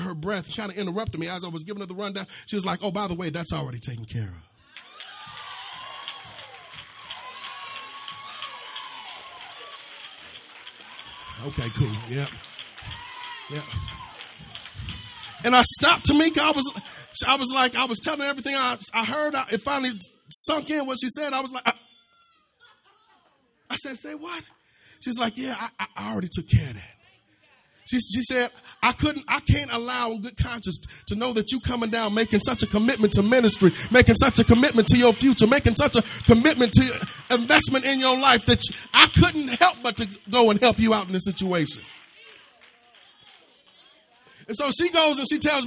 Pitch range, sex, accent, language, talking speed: 185-265 Hz, male, American, English, 170 wpm